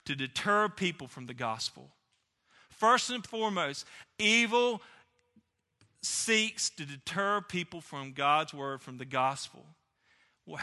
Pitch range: 155-225 Hz